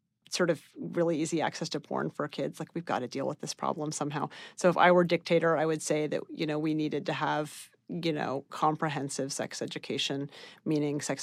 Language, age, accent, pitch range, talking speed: English, 40-59, American, 155-185 Hz, 220 wpm